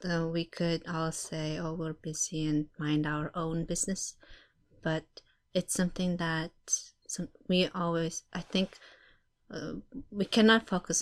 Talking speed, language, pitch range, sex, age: 135 wpm, English, 155-180 Hz, female, 30-49